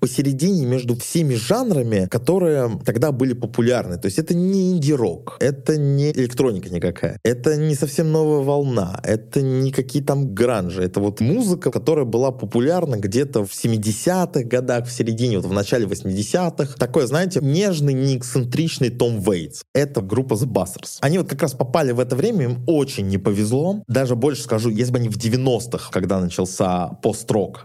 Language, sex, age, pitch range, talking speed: Russian, male, 20-39, 100-145 Hz, 165 wpm